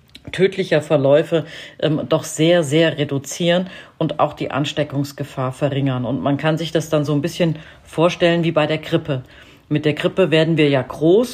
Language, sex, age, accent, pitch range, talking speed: German, female, 40-59, German, 145-170 Hz, 175 wpm